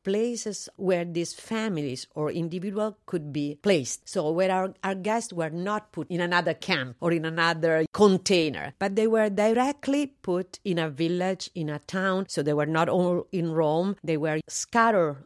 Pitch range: 150-190 Hz